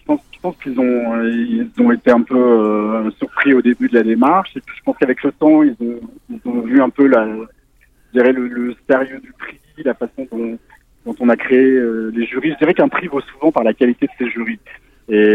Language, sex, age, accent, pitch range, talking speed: French, male, 40-59, French, 115-135 Hz, 245 wpm